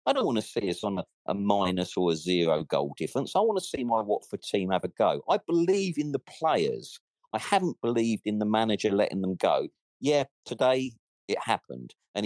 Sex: male